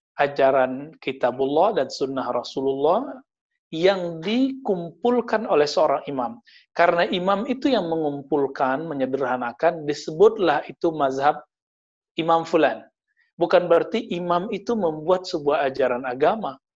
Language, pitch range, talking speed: Indonesian, 140-200 Hz, 105 wpm